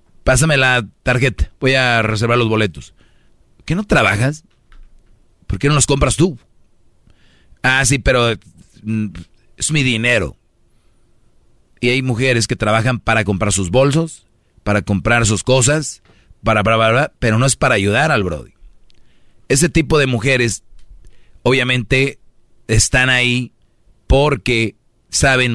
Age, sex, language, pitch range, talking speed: 40-59, male, Spanish, 110-130 Hz, 130 wpm